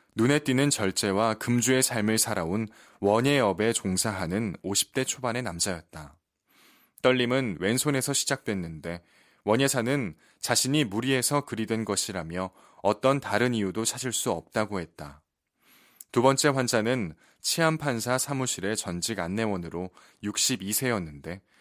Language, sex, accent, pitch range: Korean, male, native, 95-130 Hz